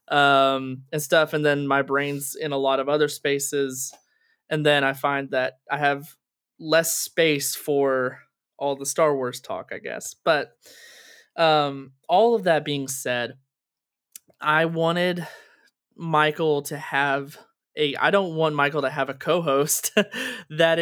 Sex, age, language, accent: male, 20-39, English, American